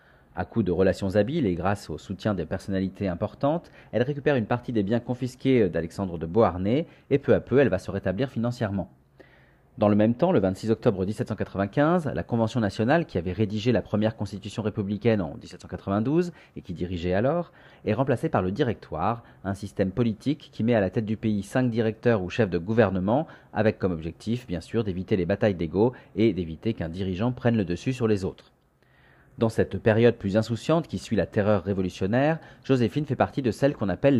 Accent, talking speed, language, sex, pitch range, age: French, 195 wpm, French, male, 95-120 Hz, 30-49